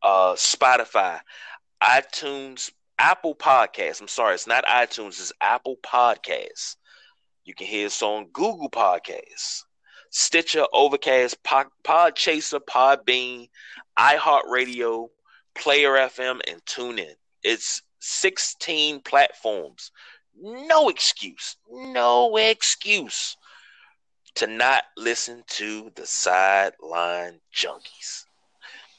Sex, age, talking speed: male, 30-49, 90 wpm